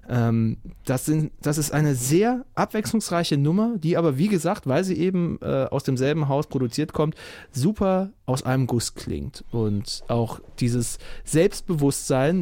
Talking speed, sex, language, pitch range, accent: 140 wpm, male, German, 130-160 Hz, German